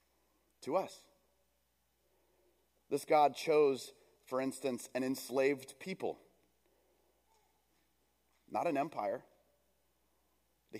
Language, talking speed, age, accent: English, 80 wpm, 30-49, American